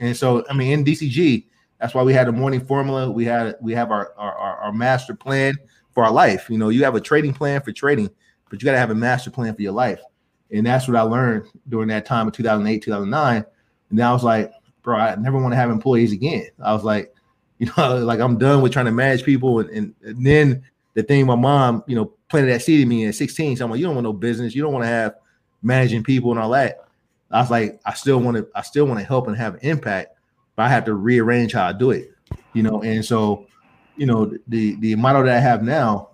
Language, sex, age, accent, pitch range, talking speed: English, male, 30-49, American, 110-135 Hz, 255 wpm